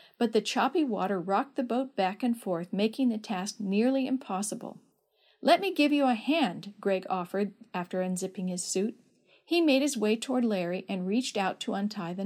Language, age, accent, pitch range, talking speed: English, 50-69, American, 195-265 Hz, 190 wpm